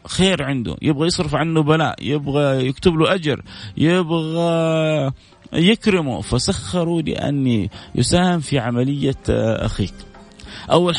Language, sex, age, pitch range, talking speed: Arabic, male, 30-49, 105-145 Hz, 105 wpm